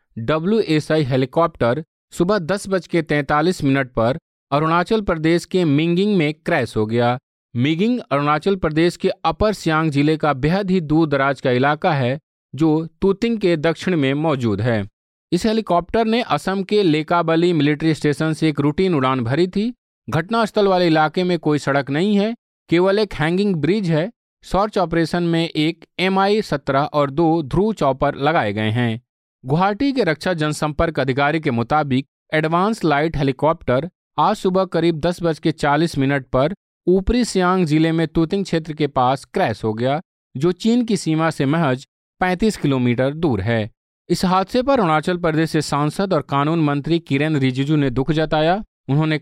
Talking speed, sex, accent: 160 wpm, male, native